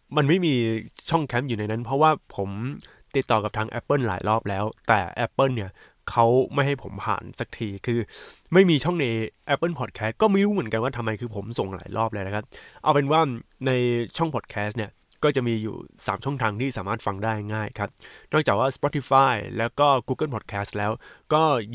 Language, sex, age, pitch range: Thai, male, 20-39, 110-135 Hz